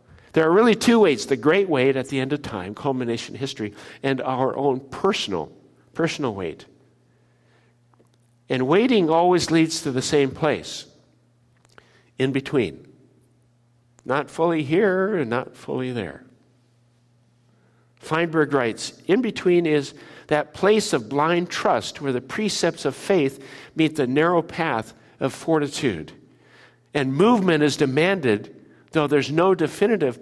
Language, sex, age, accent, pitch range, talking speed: English, male, 60-79, American, 120-160 Hz, 135 wpm